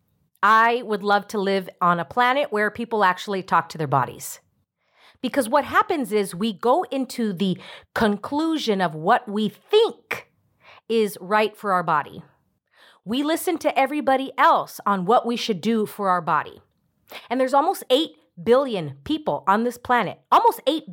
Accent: American